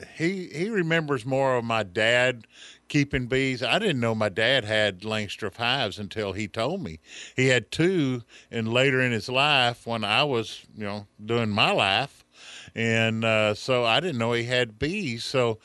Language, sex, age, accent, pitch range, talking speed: English, male, 50-69, American, 100-130 Hz, 180 wpm